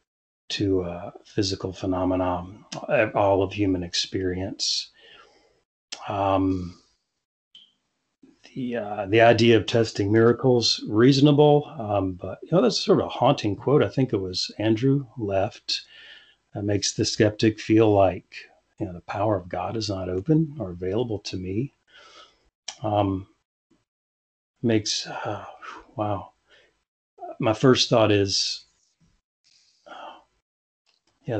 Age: 40-59